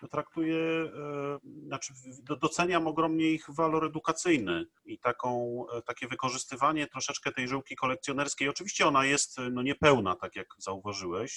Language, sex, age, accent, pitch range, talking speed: Polish, male, 30-49, native, 110-135 Hz, 125 wpm